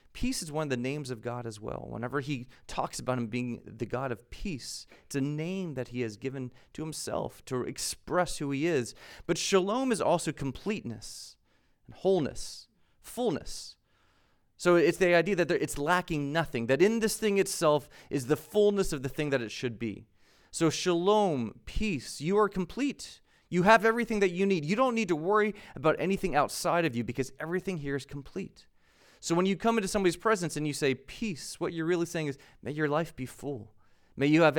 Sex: male